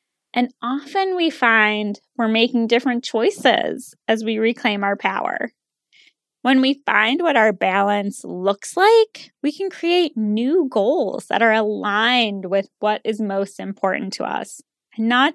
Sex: female